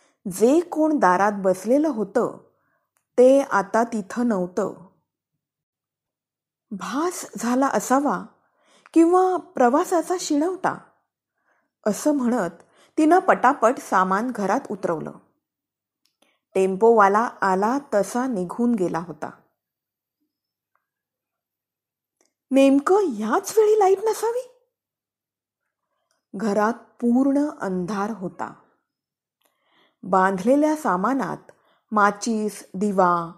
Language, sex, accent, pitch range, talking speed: Marathi, female, native, 195-290 Hz, 75 wpm